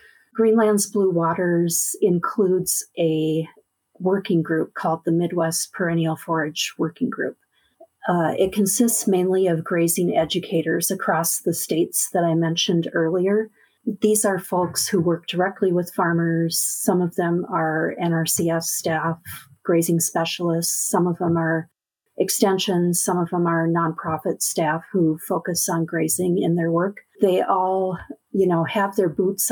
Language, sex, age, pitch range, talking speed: English, female, 50-69, 165-195 Hz, 140 wpm